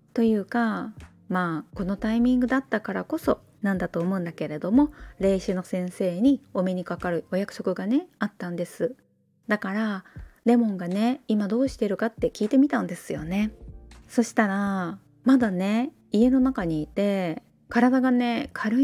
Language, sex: Japanese, female